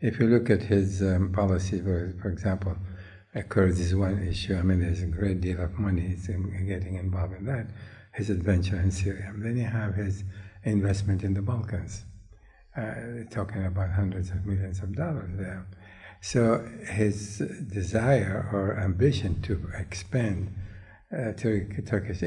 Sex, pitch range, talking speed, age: male, 95-115 Hz, 145 wpm, 60-79